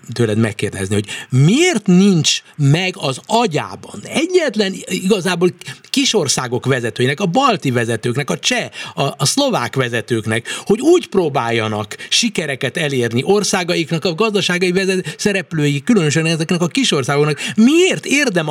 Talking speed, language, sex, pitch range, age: 125 wpm, Hungarian, male, 135-195 Hz, 60-79